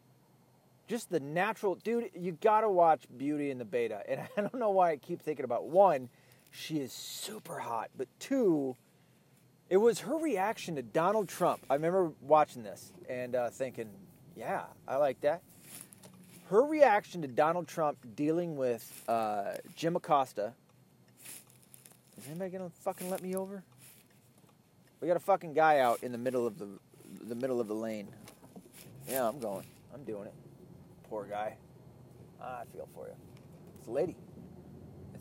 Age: 30-49